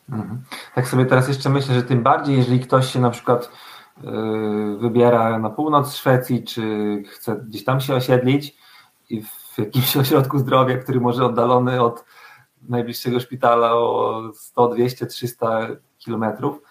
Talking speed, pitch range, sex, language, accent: 140 wpm, 115-130 Hz, male, Polish, native